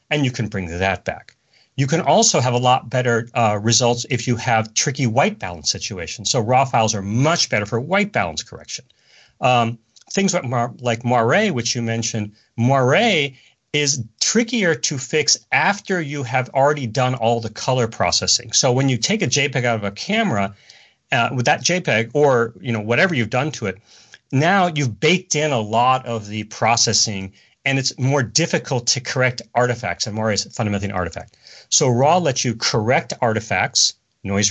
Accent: American